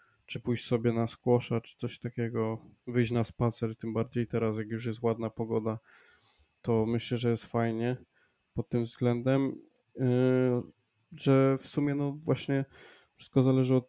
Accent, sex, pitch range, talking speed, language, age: native, male, 115-125 Hz, 150 wpm, Polish, 20-39